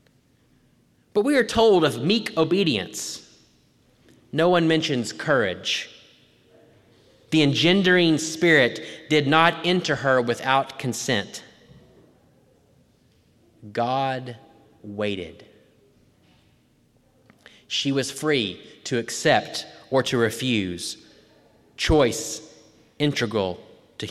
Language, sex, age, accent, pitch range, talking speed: English, male, 30-49, American, 125-160 Hz, 80 wpm